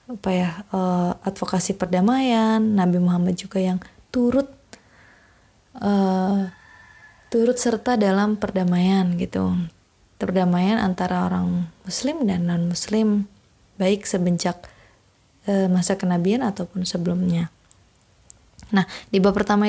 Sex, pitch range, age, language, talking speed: female, 175-205 Hz, 20-39, Indonesian, 105 wpm